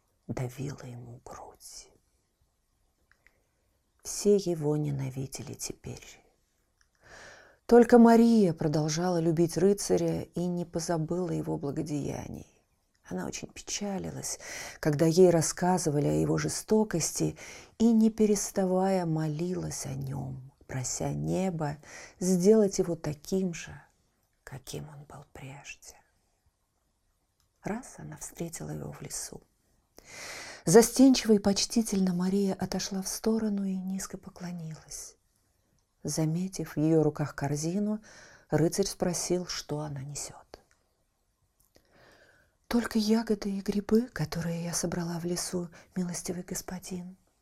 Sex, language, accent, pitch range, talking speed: female, Russian, native, 145-195 Hz, 100 wpm